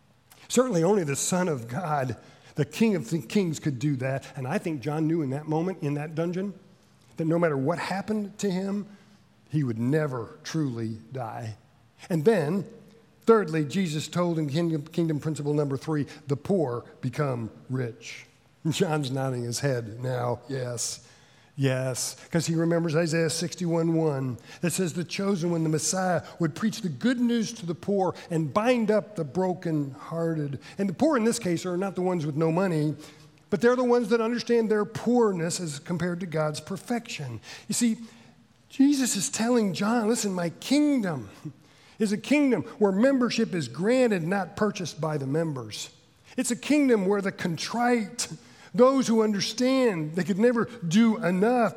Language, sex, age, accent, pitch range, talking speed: English, male, 50-69, American, 150-210 Hz, 165 wpm